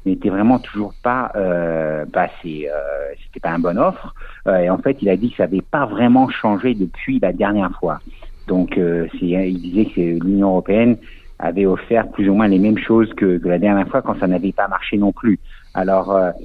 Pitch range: 90-105 Hz